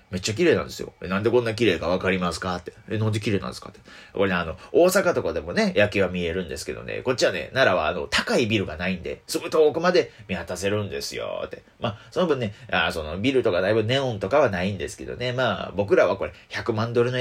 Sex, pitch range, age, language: male, 105-170 Hz, 30-49, Japanese